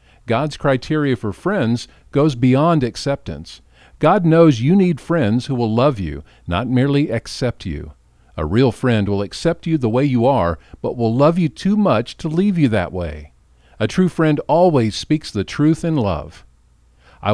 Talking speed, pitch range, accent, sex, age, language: 175 wpm, 90-140 Hz, American, male, 50-69, English